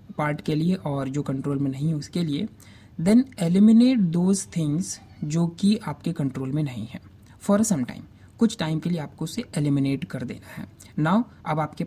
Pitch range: 145-195 Hz